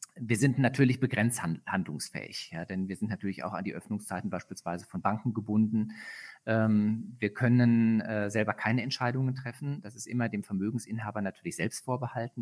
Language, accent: German, German